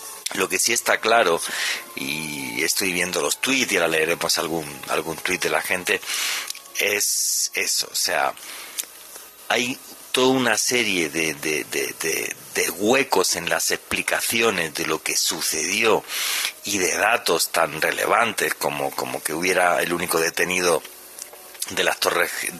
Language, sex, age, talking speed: Spanish, male, 40-59, 145 wpm